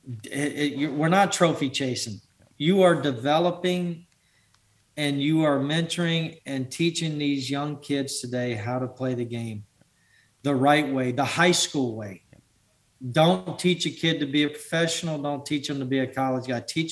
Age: 40-59